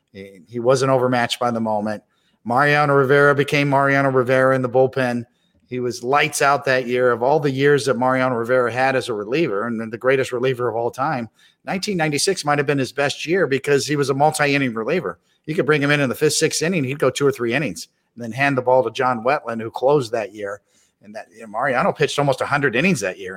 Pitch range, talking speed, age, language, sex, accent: 120-140 Hz, 230 wpm, 40-59, English, male, American